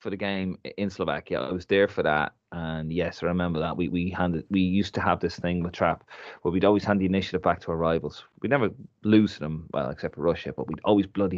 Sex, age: male, 30-49